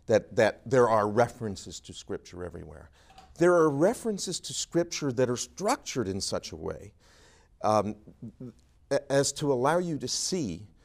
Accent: American